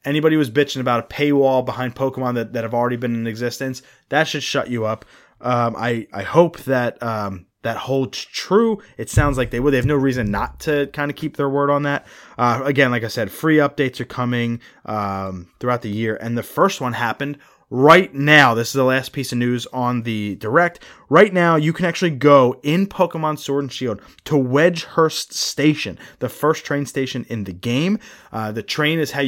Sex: male